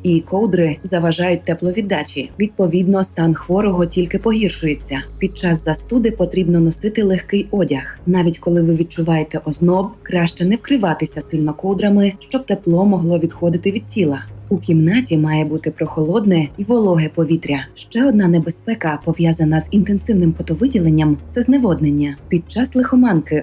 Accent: native